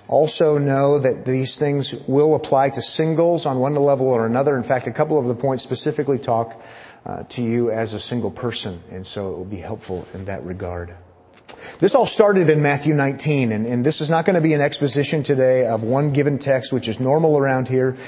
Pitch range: 125-155 Hz